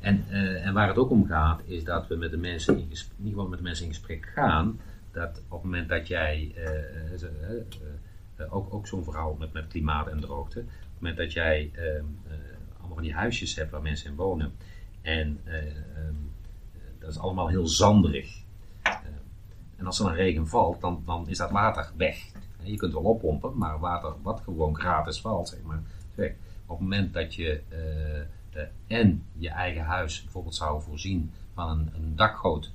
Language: Dutch